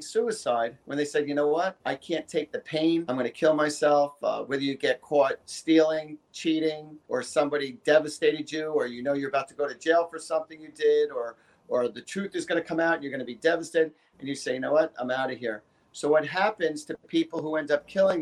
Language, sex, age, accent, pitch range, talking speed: English, male, 40-59, American, 150-185 Hz, 245 wpm